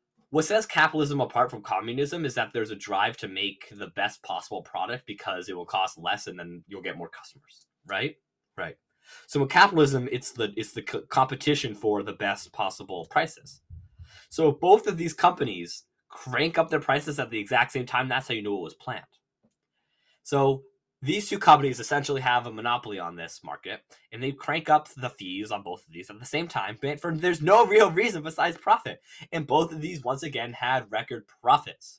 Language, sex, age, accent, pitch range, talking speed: English, male, 20-39, American, 105-150 Hz, 205 wpm